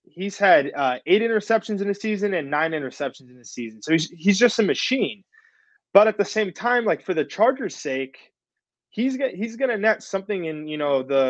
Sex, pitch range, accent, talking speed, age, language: male, 140-180 Hz, American, 210 wpm, 20-39, English